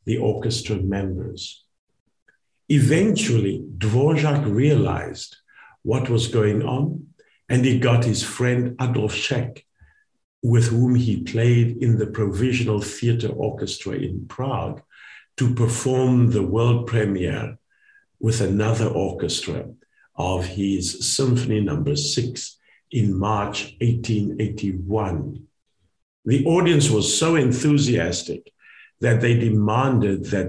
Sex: male